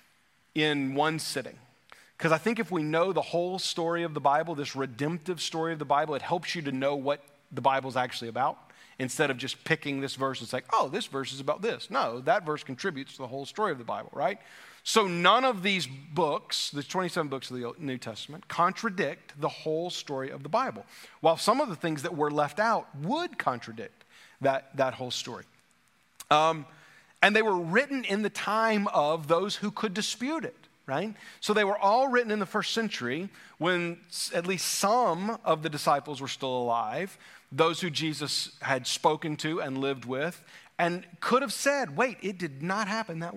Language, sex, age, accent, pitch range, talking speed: English, male, 40-59, American, 145-215 Hz, 200 wpm